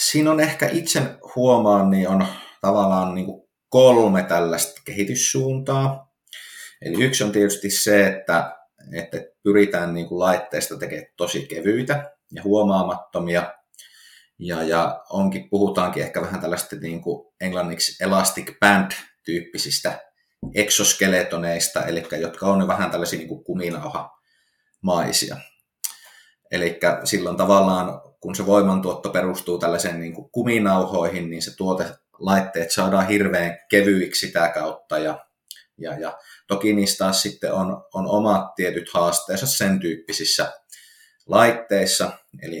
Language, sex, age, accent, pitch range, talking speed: Finnish, male, 30-49, native, 85-105 Hz, 110 wpm